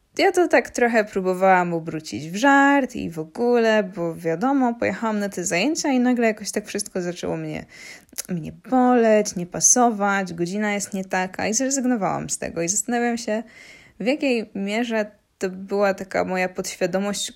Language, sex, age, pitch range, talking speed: Polish, female, 10-29, 175-220 Hz, 165 wpm